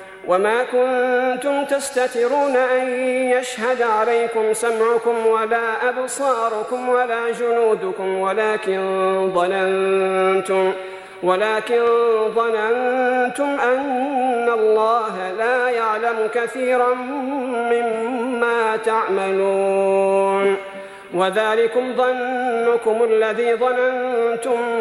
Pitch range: 195-235 Hz